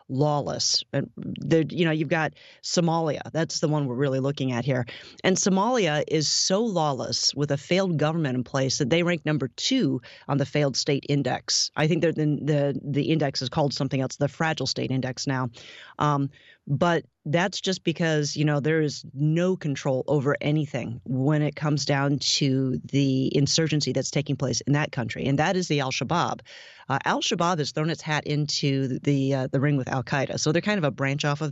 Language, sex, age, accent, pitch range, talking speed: English, female, 30-49, American, 135-160 Hz, 195 wpm